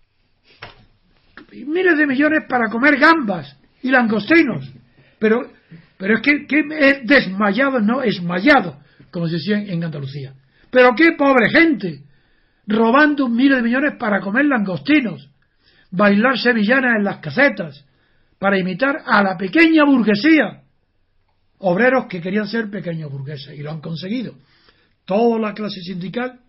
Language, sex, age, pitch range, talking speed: Spanish, male, 60-79, 160-245 Hz, 130 wpm